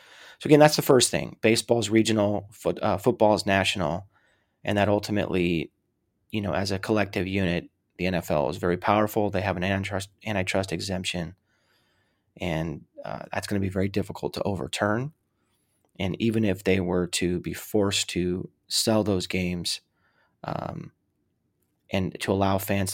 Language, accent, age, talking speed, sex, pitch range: English, American, 30-49, 160 wpm, male, 90-105 Hz